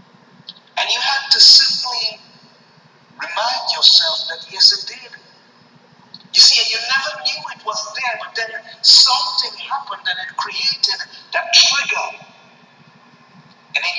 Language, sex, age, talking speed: English, male, 50-69, 135 wpm